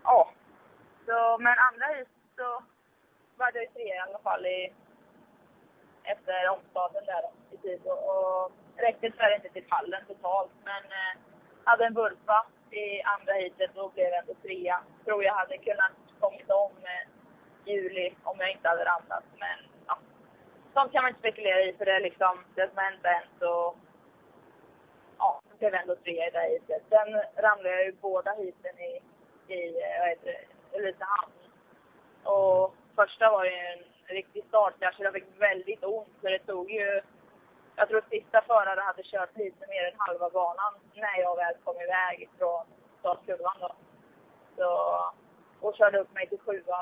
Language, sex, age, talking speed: Swedish, female, 20-39, 180 wpm